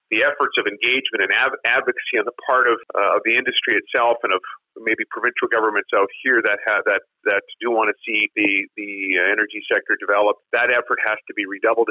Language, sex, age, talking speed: English, male, 40-59, 210 wpm